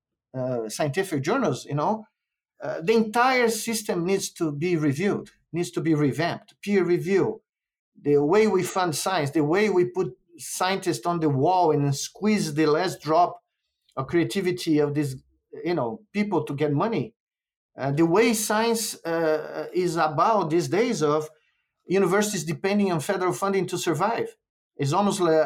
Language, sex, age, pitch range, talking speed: English, male, 50-69, 150-200 Hz, 160 wpm